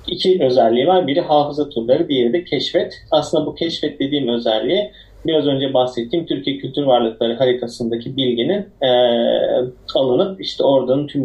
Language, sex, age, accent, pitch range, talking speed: Turkish, male, 40-59, native, 125-160 Hz, 140 wpm